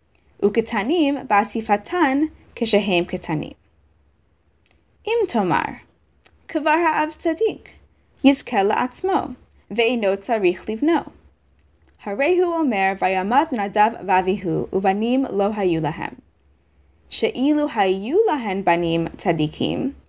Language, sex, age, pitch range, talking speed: English, female, 20-39, 175-270 Hz, 85 wpm